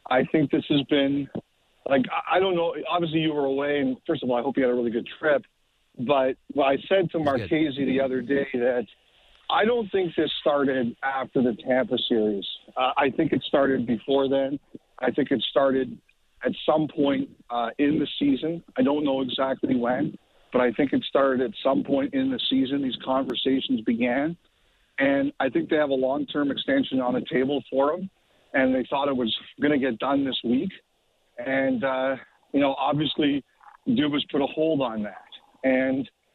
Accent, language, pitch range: American, English, 130-160 Hz